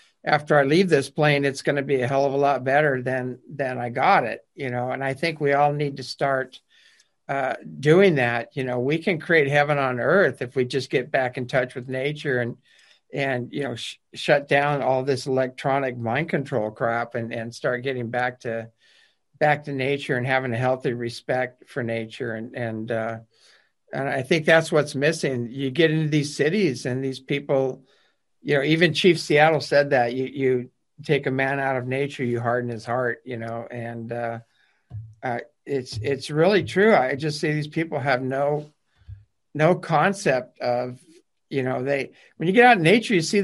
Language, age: English, 50-69